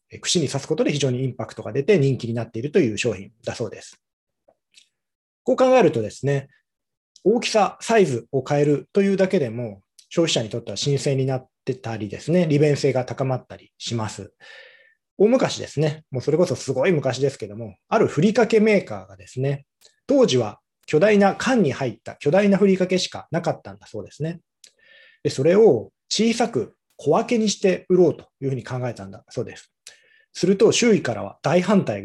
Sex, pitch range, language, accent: male, 120-190 Hz, Japanese, native